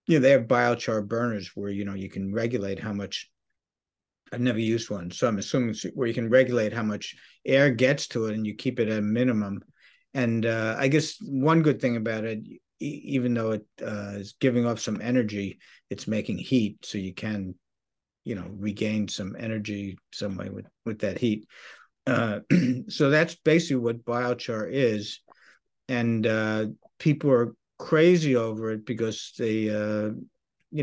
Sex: male